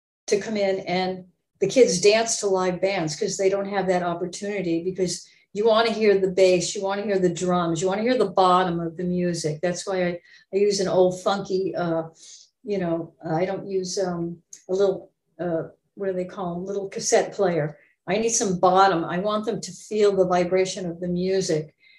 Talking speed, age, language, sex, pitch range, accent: 215 wpm, 50-69, English, female, 185-230 Hz, American